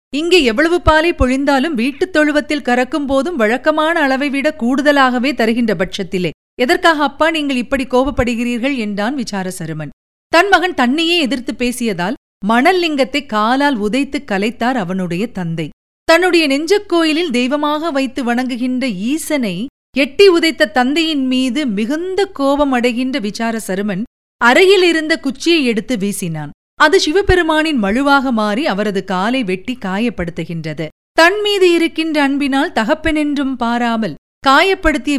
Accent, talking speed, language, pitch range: native, 105 wpm, Tamil, 230-305 Hz